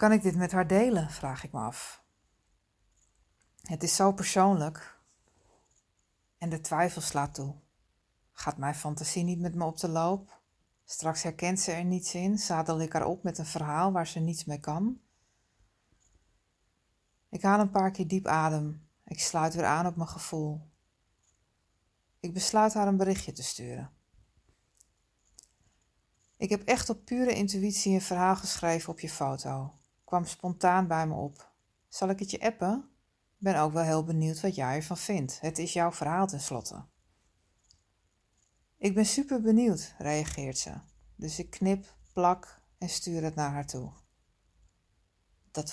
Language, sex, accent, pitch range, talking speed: Dutch, female, Dutch, 125-180 Hz, 160 wpm